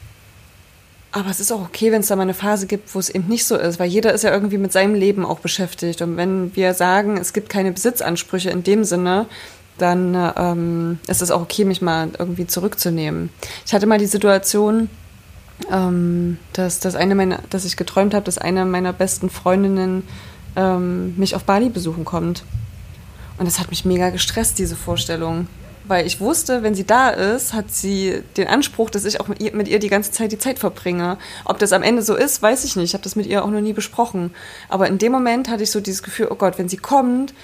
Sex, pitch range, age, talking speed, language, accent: female, 180-210 Hz, 20-39, 220 wpm, German, German